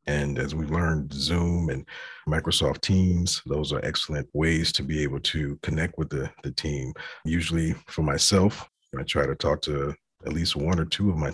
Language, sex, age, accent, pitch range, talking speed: English, male, 40-59, American, 75-85 Hz, 190 wpm